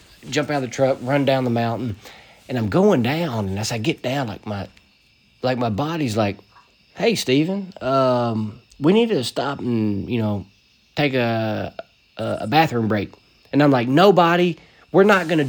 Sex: male